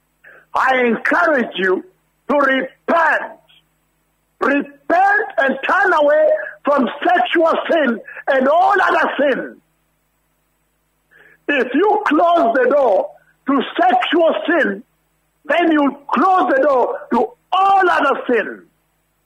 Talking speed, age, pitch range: 105 wpm, 60-79, 285-390 Hz